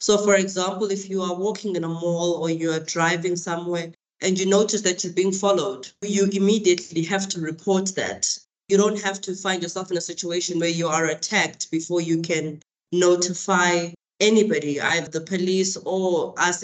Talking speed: 185 wpm